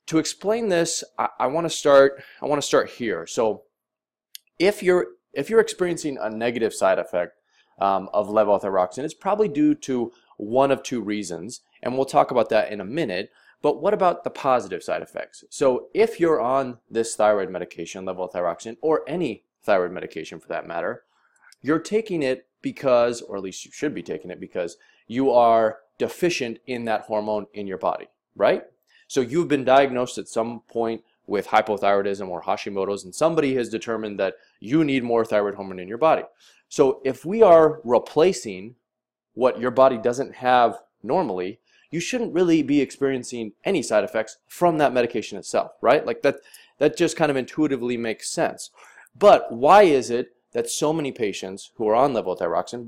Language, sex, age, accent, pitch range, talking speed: English, male, 20-39, American, 110-155 Hz, 175 wpm